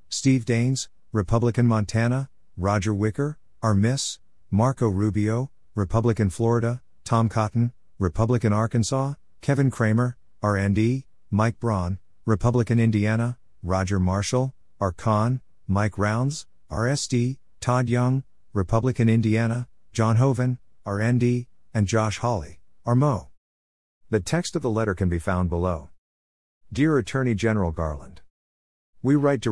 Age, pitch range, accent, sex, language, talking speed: 50-69, 90-115 Hz, American, male, English, 130 wpm